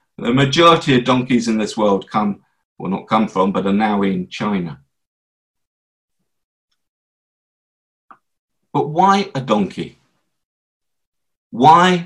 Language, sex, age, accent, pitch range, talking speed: English, male, 50-69, British, 110-150 Hz, 110 wpm